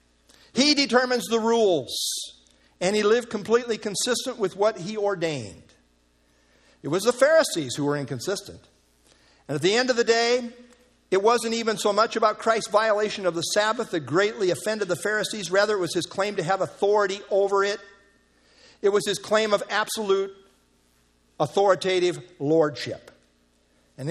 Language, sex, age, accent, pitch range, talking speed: English, male, 50-69, American, 185-220 Hz, 155 wpm